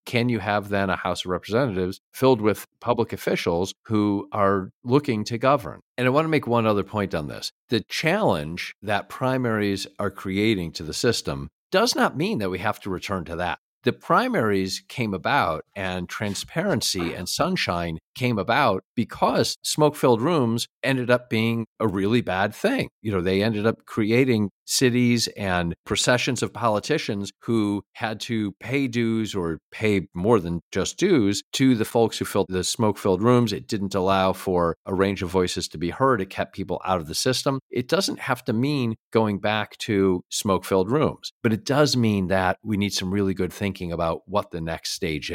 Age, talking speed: 50-69, 185 wpm